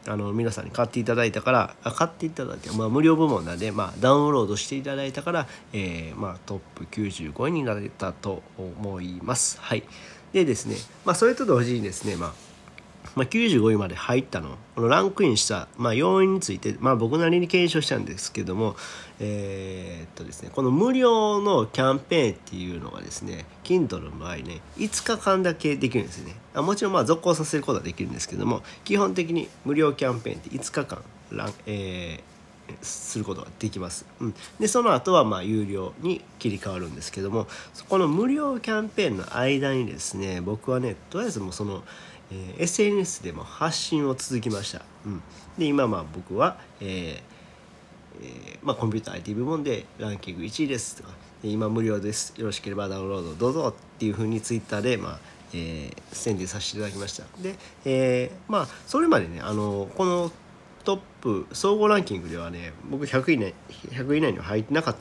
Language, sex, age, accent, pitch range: Japanese, male, 40-59, native, 95-155 Hz